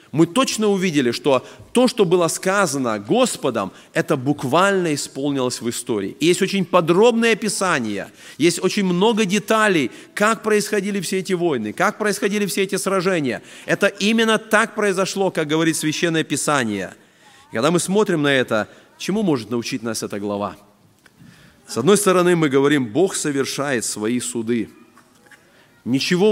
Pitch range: 120-190 Hz